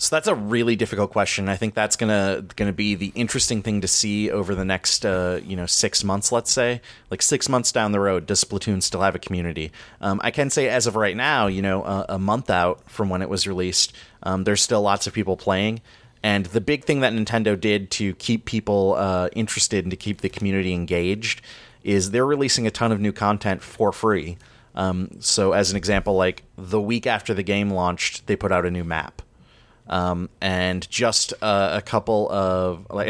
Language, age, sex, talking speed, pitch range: English, 30-49, male, 215 wpm, 95-110 Hz